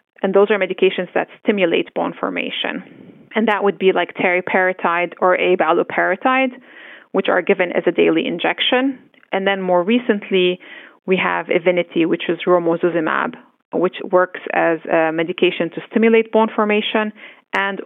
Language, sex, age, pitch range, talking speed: English, female, 30-49, 180-235 Hz, 145 wpm